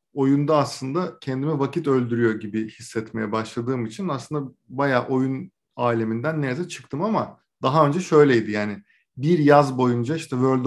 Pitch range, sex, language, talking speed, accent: 120-140 Hz, male, Turkish, 140 wpm, native